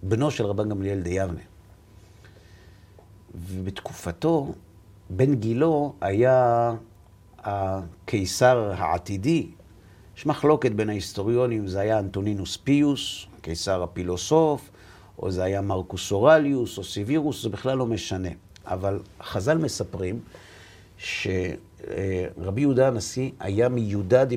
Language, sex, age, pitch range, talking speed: Hebrew, male, 50-69, 95-115 Hz, 100 wpm